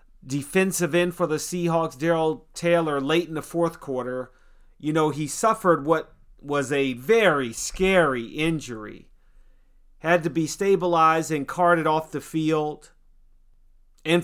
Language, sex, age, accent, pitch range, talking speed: English, male, 40-59, American, 145-185 Hz, 135 wpm